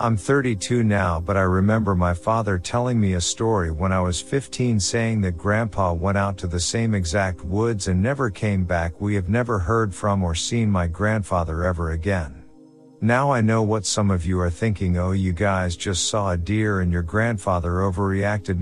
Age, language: 50-69, English